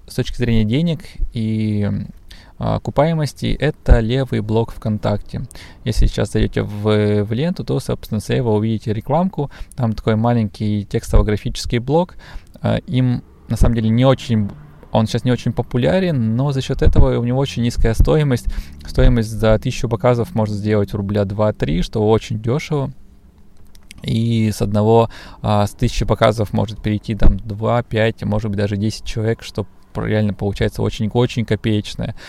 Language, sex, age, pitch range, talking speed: Russian, male, 20-39, 105-120 Hz, 150 wpm